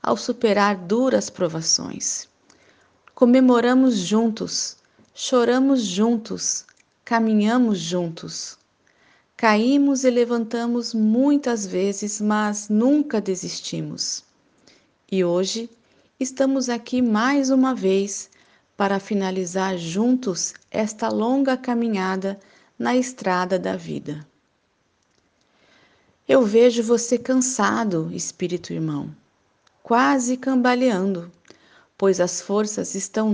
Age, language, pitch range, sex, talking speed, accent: 40-59, Portuguese, 195-245 Hz, female, 85 wpm, Brazilian